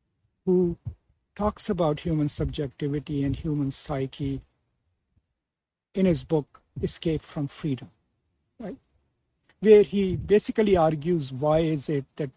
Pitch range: 140-180 Hz